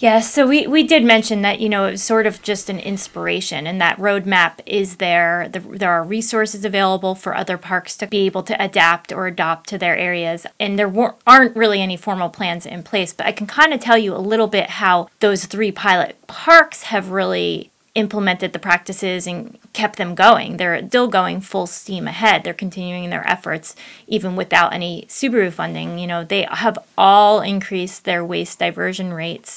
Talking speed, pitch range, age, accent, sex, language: 195 wpm, 180-220 Hz, 30-49, American, female, English